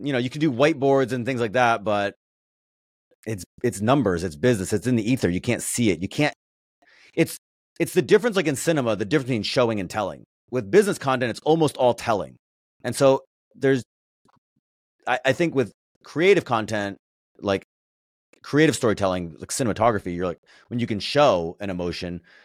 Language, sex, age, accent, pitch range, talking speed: English, male, 30-49, American, 95-130 Hz, 180 wpm